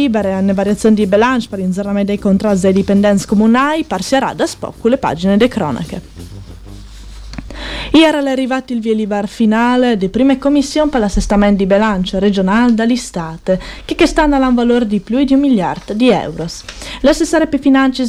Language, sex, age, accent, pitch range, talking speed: Italian, female, 20-39, native, 200-265 Hz, 165 wpm